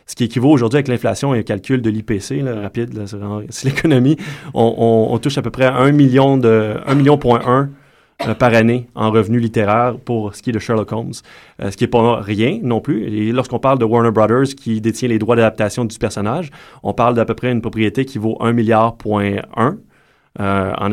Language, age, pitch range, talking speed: French, 20-39, 110-130 Hz, 230 wpm